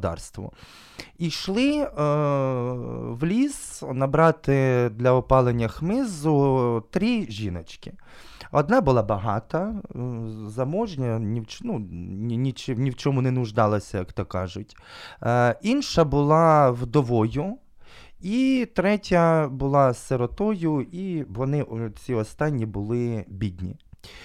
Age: 20-39